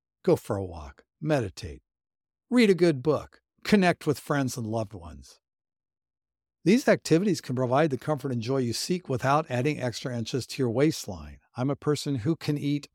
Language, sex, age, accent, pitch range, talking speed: English, male, 60-79, American, 115-170 Hz, 175 wpm